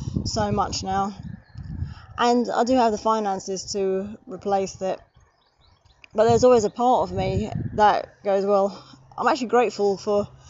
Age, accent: 20-39, British